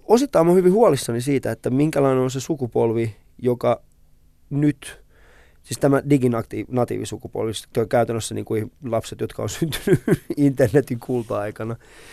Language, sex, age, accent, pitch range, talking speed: Finnish, male, 20-39, native, 115-145 Hz, 130 wpm